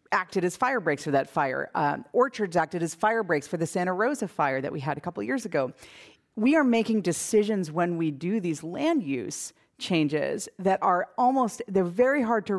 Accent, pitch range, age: American, 150-195 Hz, 40-59